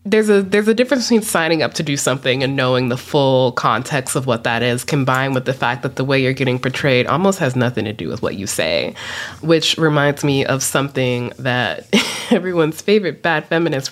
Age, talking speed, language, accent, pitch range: 20-39, 210 wpm, English, American, 130-165 Hz